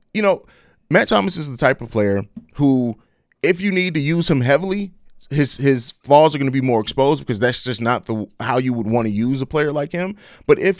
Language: English